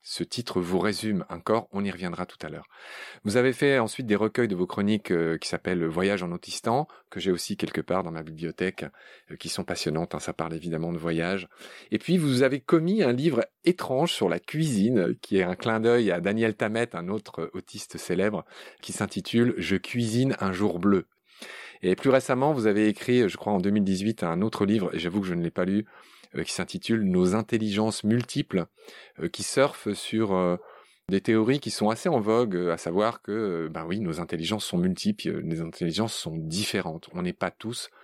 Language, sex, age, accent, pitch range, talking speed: French, male, 30-49, French, 90-125 Hz, 205 wpm